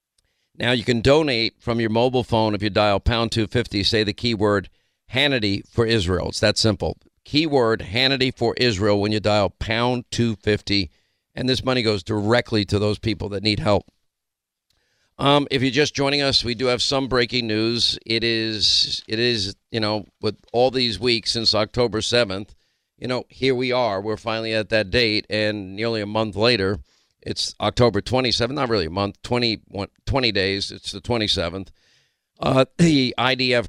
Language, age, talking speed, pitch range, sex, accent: English, 50-69, 175 wpm, 105-120 Hz, male, American